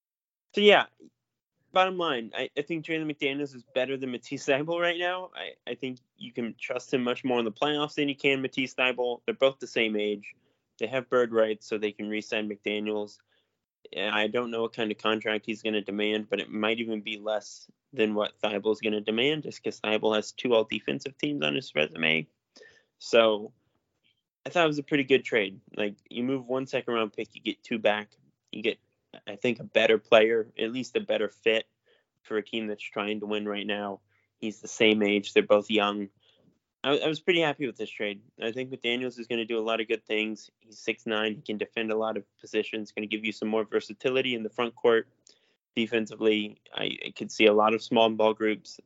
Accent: American